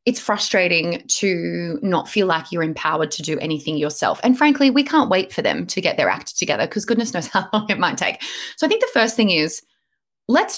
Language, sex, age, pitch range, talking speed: English, female, 20-39, 190-270 Hz, 225 wpm